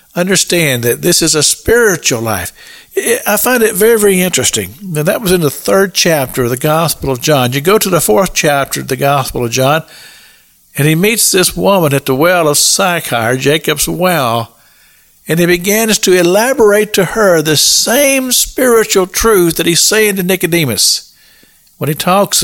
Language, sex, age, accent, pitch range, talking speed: English, male, 60-79, American, 120-180 Hz, 180 wpm